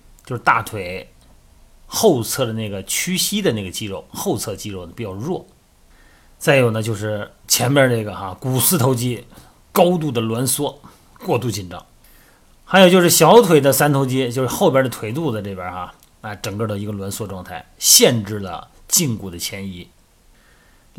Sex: male